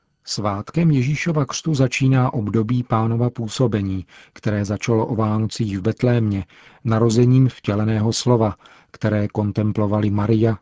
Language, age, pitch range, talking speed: Czech, 40-59, 105-125 Hz, 105 wpm